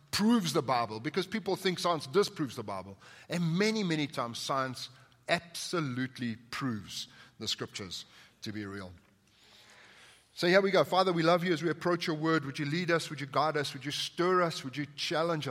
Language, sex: English, male